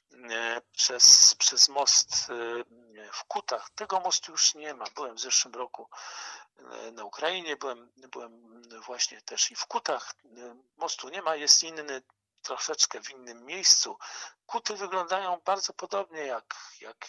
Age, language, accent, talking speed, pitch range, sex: 50-69, Polish, native, 135 wpm, 120-180 Hz, male